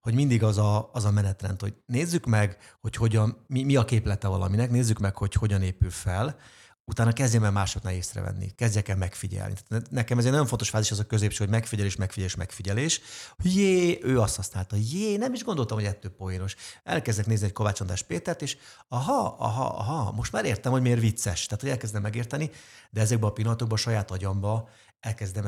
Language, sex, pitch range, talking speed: Hungarian, male, 100-115 Hz, 195 wpm